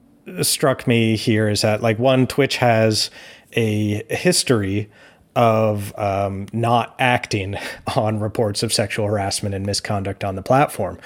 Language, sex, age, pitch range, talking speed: English, male, 30-49, 100-125 Hz, 135 wpm